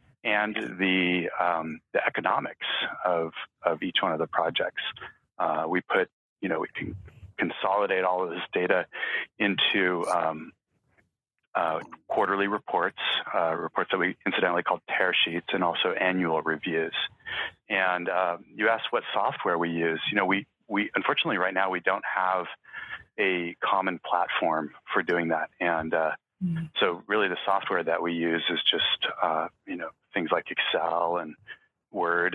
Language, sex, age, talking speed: English, male, 30-49, 155 wpm